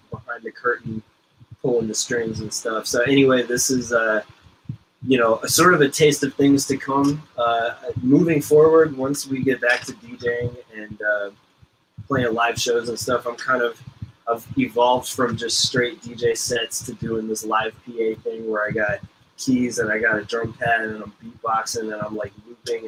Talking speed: 195 wpm